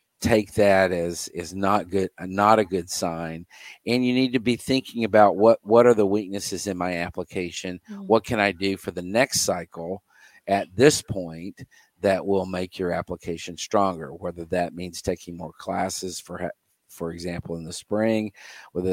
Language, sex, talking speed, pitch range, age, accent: English, male, 175 wpm, 90-105 Hz, 50-69, American